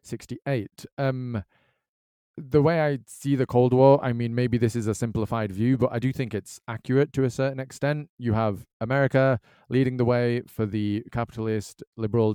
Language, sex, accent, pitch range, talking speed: English, male, British, 105-130 Hz, 180 wpm